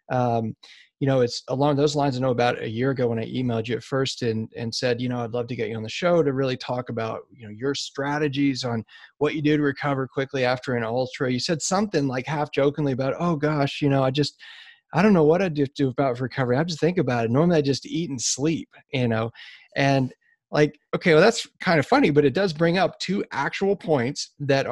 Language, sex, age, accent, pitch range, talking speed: English, male, 30-49, American, 120-150 Hz, 250 wpm